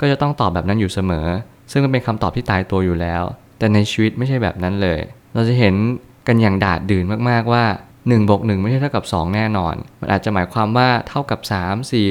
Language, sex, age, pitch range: Thai, male, 20-39, 95-115 Hz